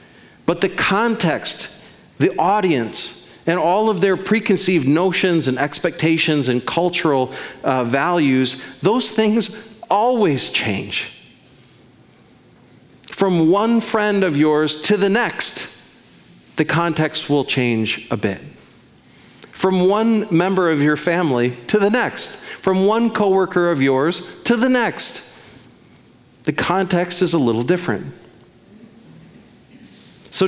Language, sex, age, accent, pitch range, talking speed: English, male, 40-59, American, 155-205 Hz, 115 wpm